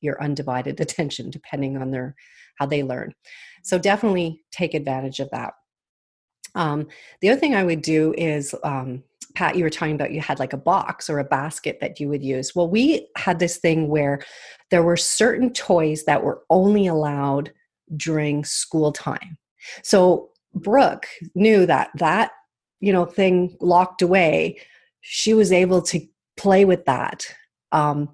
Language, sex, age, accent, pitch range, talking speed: English, female, 30-49, American, 155-205 Hz, 160 wpm